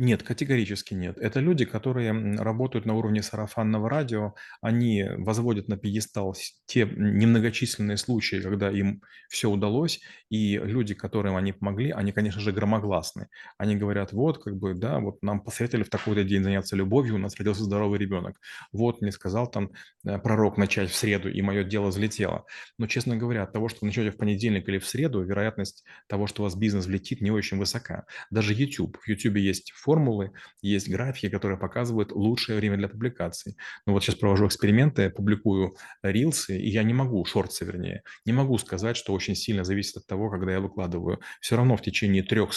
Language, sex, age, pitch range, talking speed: Russian, male, 30-49, 100-115 Hz, 180 wpm